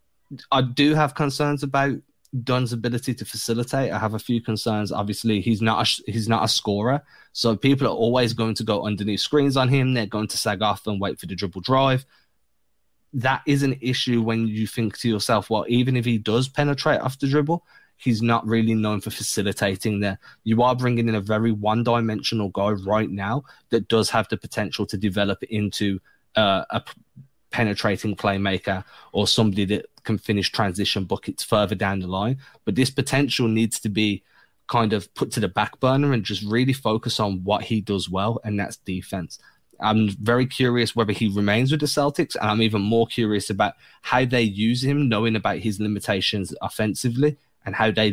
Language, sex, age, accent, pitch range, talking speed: English, male, 20-39, British, 105-125 Hz, 190 wpm